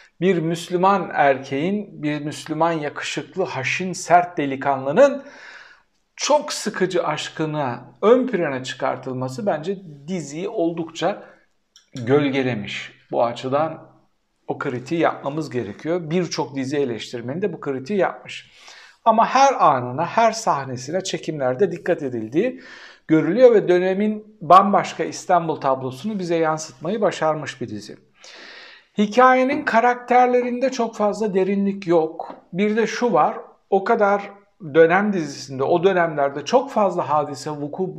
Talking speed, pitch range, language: 110 wpm, 145-210 Hz, Turkish